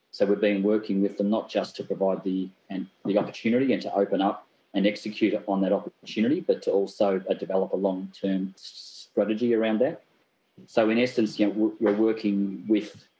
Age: 30-49